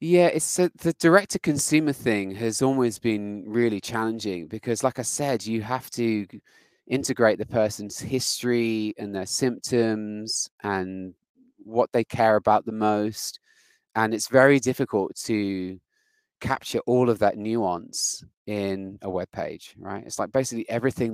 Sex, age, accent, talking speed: male, 20-39, British, 150 wpm